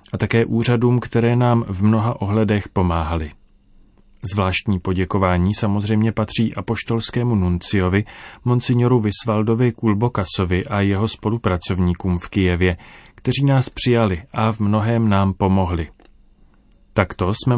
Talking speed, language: 115 wpm, Czech